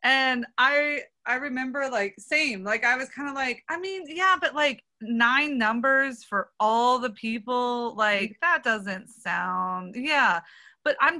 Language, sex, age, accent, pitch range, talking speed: English, female, 20-39, American, 205-275 Hz, 160 wpm